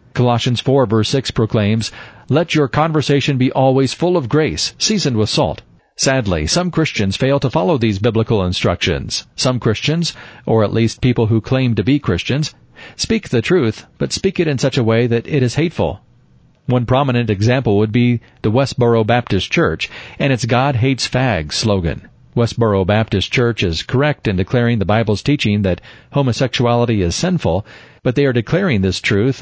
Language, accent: English, American